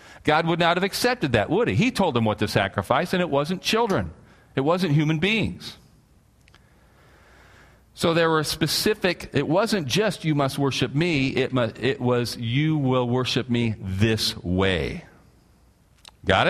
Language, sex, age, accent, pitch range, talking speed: English, male, 40-59, American, 95-130 Hz, 155 wpm